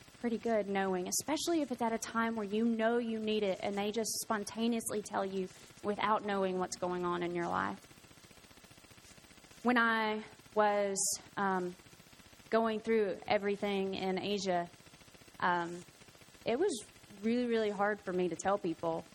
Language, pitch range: English, 185-215 Hz